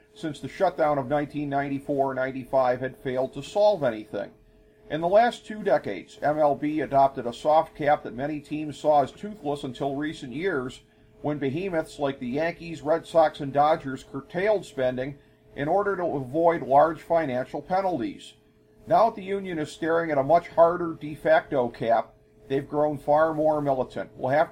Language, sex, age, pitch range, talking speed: English, male, 50-69, 130-165 Hz, 165 wpm